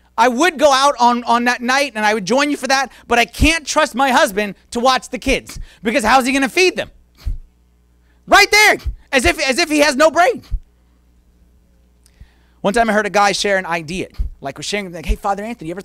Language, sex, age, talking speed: English, male, 30-49, 220 wpm